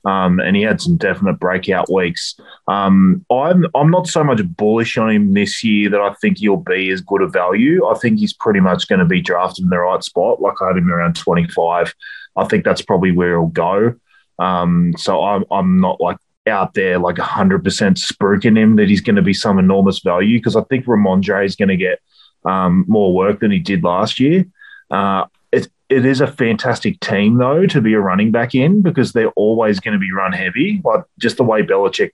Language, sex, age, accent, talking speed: English, male, 20-39, Australian, 215 wpm